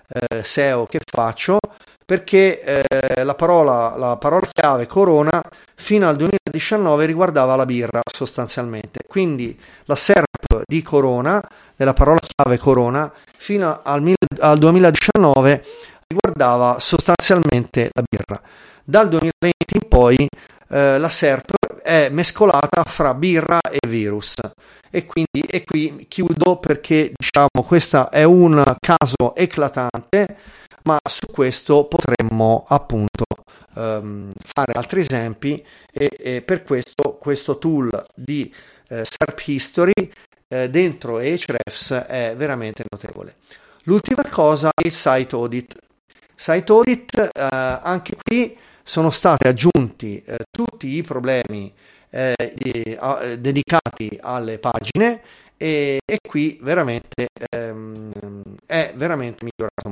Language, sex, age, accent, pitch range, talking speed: Italian, male, 30-49, native, 120-170 Hz, 115 wpm